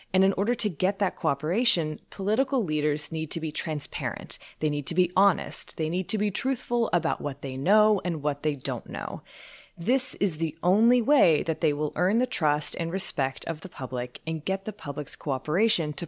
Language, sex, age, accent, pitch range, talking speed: English, female, 30-49, American, 145-195 Hz, 200 wpm